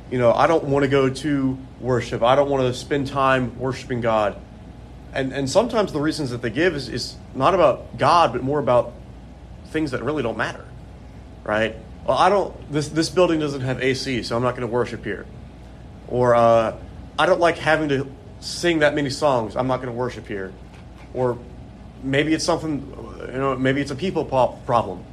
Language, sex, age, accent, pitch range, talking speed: English, male, 30-49, American, 120-155 Hz, 200 wpm